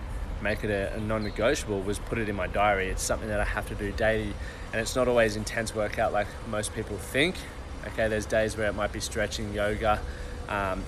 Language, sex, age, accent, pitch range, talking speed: English, male, 20-39, Australian, 100-115 Hz, 215 wpm